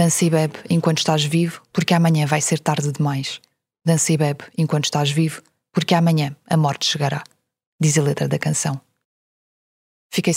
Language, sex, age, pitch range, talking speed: Portuguese, female, 20-39, 140-165 Hz, 170 wpm